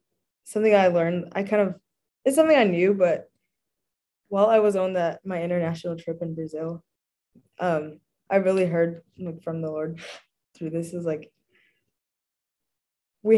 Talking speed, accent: 150 wpm, American